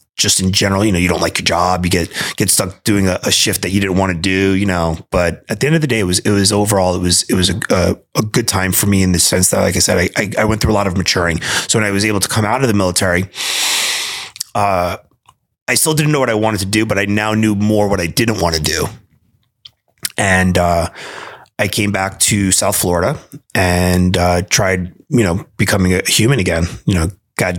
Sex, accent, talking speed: male, American, 250 wpm